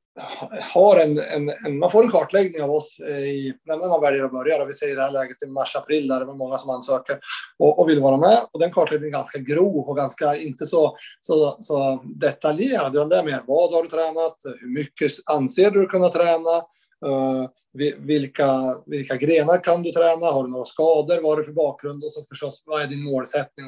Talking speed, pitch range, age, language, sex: 220 wpm, 135-170 Hz, 30-49, Swedish, male